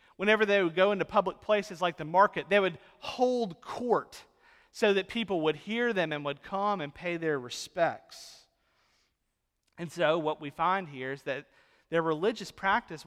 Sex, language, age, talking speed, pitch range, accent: male, English, 40-59, 175 wpm, 150-205 Hz, American